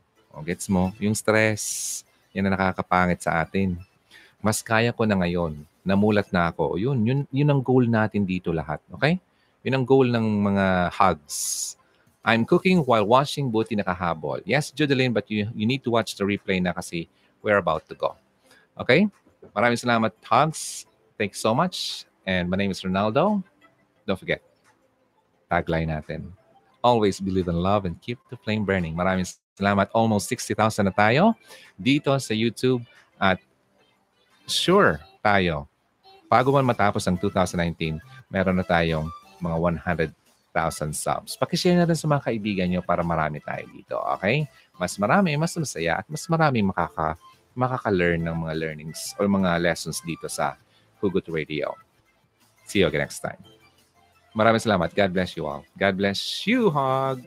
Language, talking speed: Filipino, 155 wpm